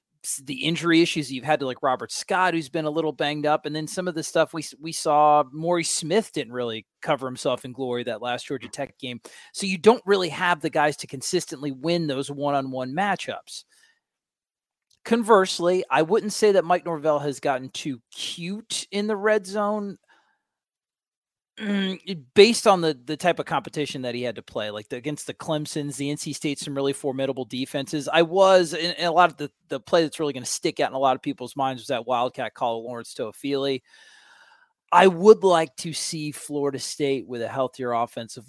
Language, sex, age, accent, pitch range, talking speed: English, male, 30-49, American, 135-175 Hz, 200 wpm